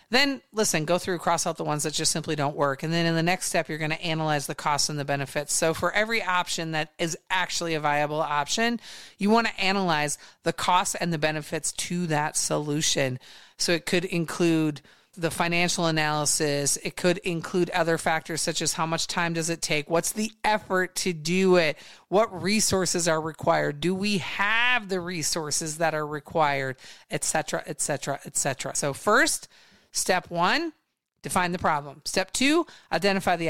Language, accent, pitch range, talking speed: English, American, 160-205 Hz, 190 wpm